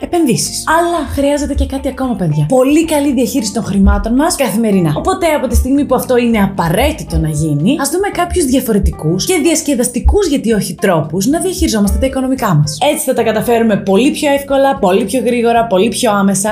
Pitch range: 190-275 Hz